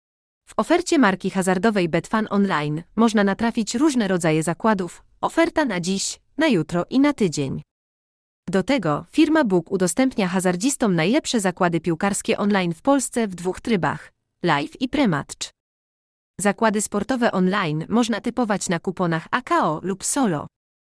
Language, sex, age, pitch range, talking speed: Polish, female, 30-49, 175-235 Hz, 135 wpm